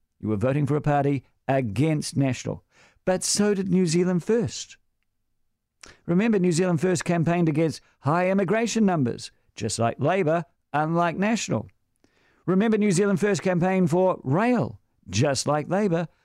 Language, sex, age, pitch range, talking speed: English, male, 50-69, 125-180 Hz, 140 wpm